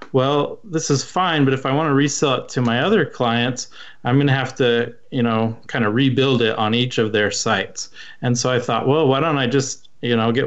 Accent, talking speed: American, 245 wpm